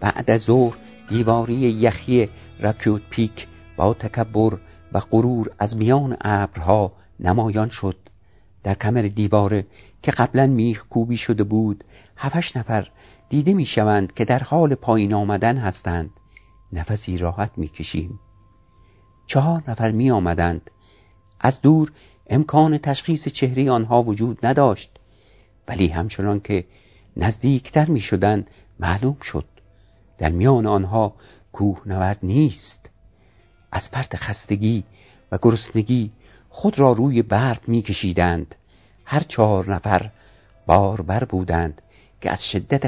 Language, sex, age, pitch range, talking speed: Persian, male, 60-79, 95-120 Hz, 115 wpm